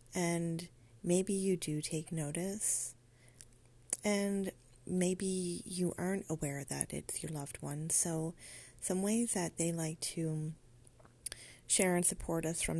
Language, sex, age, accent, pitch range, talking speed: English, female, 30-49, American, 130-170 Hz, 130 wpm